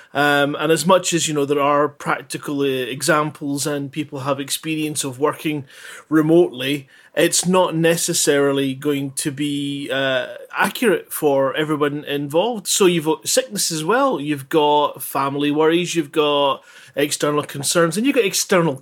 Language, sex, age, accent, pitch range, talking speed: English, male, 30-49, British, 145-175 Hz, 155 wpm